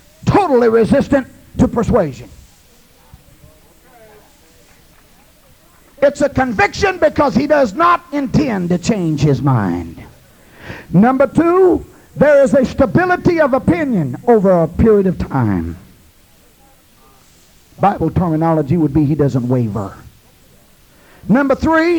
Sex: male